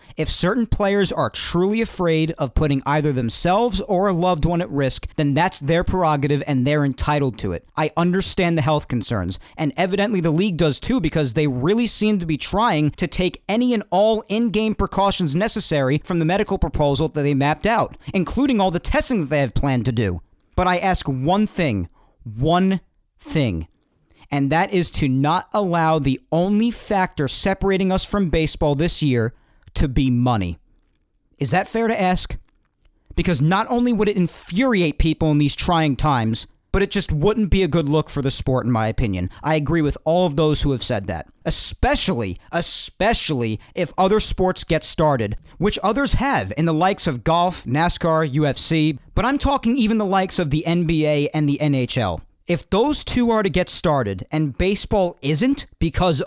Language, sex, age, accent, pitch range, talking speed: English, male, 40-59, American, 140-190 Hz, 185 wpm